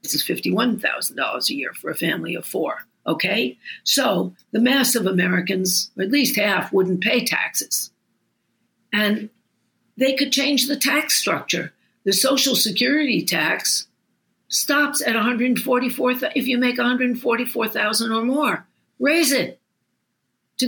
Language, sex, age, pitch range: English, female, 60-79, 205-275 Hz